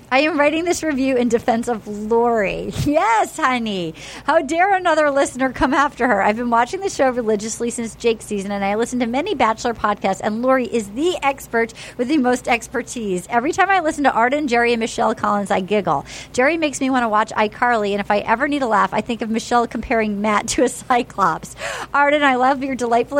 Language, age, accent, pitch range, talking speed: English, 40-59, American, 225-295 Hz, 215 wpm